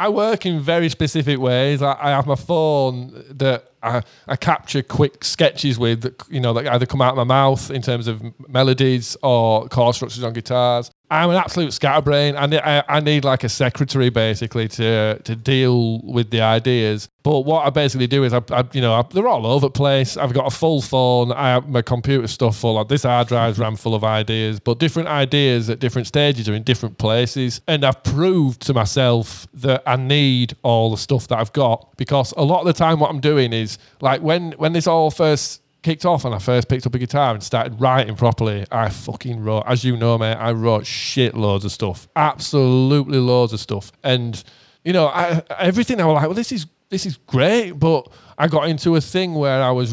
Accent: British